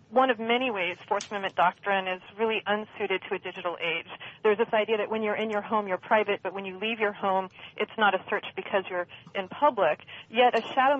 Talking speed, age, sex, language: 230 wpm, 40-59, female, English